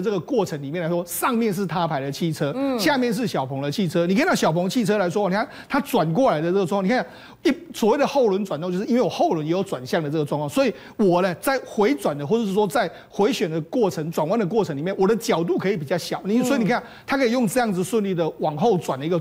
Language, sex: Chinese, male